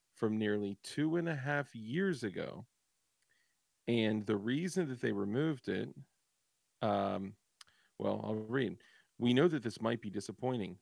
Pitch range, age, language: 105-150 Hz, 40-59, English